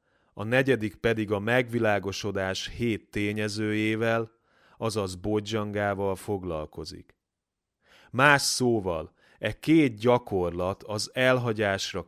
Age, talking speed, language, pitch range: 30-49, 85 wpm, Hungarian, 95-115 Hz